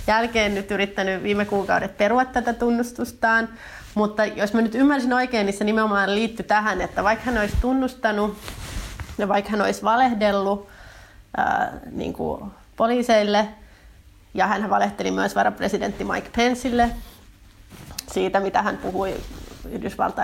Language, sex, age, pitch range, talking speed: Finnish, female, 30-49, 200-235 Hz, 135 wpm